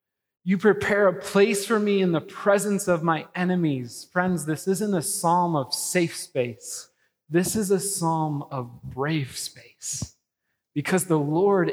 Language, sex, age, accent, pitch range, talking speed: English, male, 30-49, American, 150-200 Hz, 155 wpm